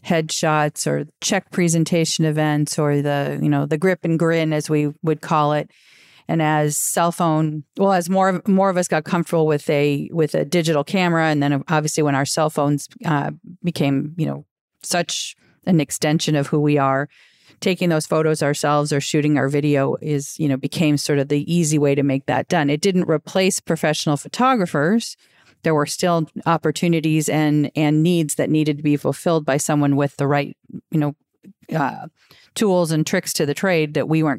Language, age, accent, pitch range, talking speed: English, 40-59, American, 145-165 Hz, 190 wpm